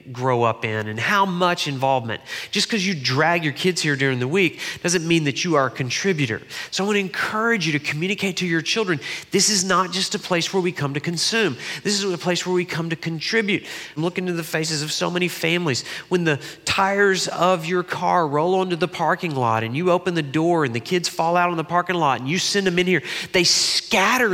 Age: 30-49